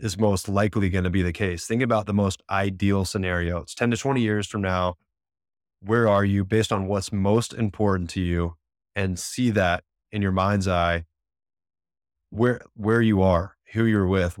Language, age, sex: English, 20-39, male